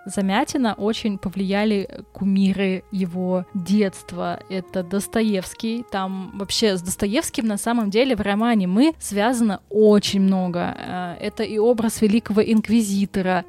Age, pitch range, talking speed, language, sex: 20-39, 190-215 Hz, 115 wpm, Russian, female